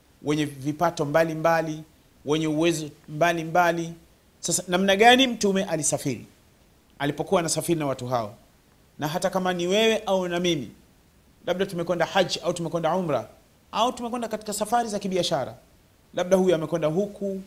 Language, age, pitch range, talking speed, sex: Swahili, 40-59, 150-200 Hz, 145 wpm, male